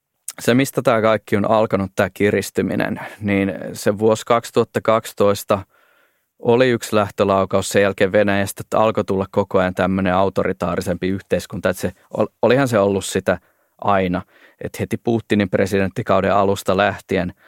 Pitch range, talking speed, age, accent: 90-105 Hz, 135 wpm, 20-39, native